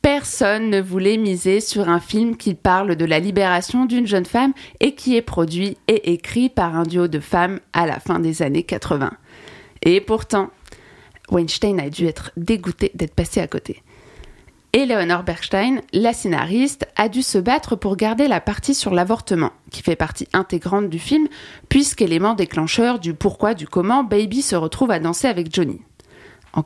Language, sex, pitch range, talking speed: French, female, 170-220 Hz, 175 wpm